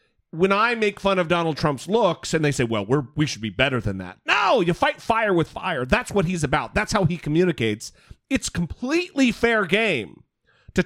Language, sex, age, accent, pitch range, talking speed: English, male, 40-59, American, 150-220 Hz, 210 wpm